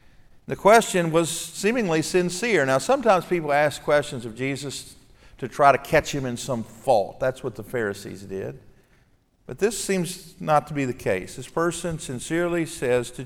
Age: 50-69